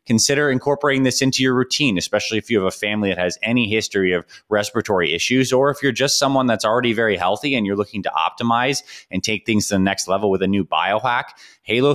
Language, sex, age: English, male, 20-39